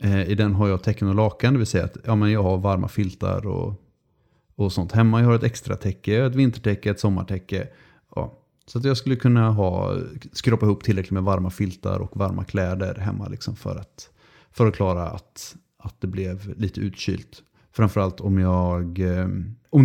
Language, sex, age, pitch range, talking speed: English, male, 30-49, 95-120 Hz, 185 wpm